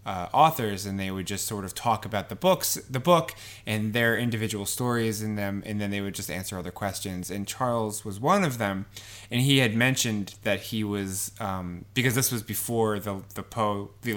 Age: 20-39